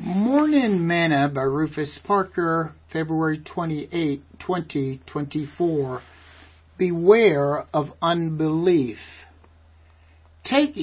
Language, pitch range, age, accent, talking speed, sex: English, 130-170 Hz, 60-79, American, 65 wpm, male